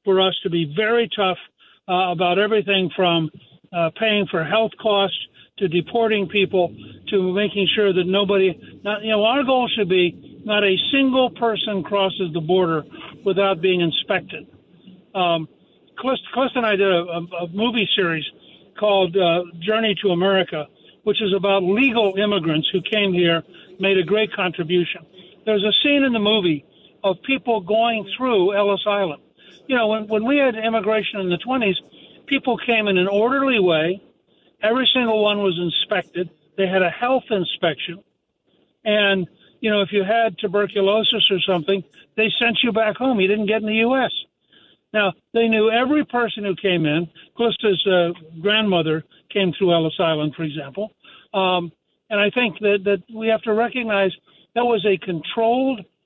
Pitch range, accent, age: 180-220 Hz, American, 60-79